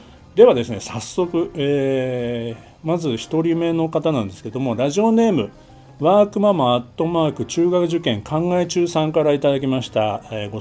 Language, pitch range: Japanese, 120-175 Hz